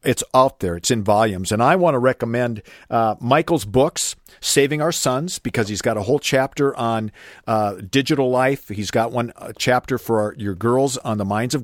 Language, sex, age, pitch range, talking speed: English, male, 50-69, 110-135 Hz, 205 wpm